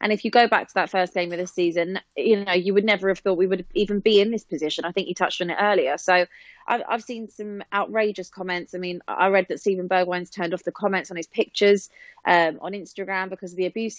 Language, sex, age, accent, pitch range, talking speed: English, female, 20-39, British, 185-235 Hz, 260 wpm